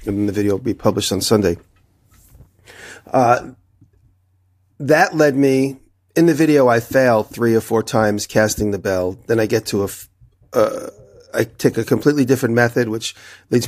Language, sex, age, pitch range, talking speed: English, male, 40-59, 100-125 Hz, 175 wpm